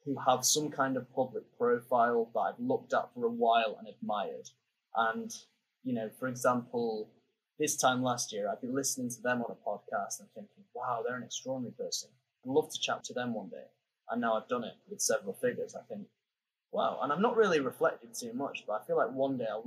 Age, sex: 10-29, male